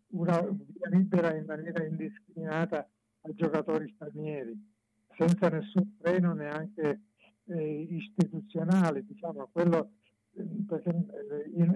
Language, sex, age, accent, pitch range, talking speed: Italian, male, 50-69, native, 155-185 Hz, 85 wpm